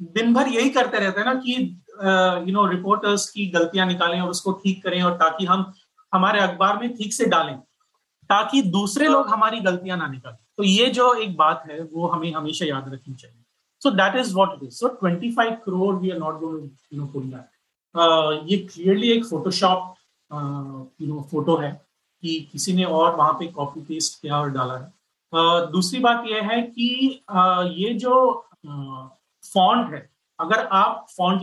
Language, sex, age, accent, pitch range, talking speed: Hindi, male, 30-49, native, 160-210 Hz, 185 wpm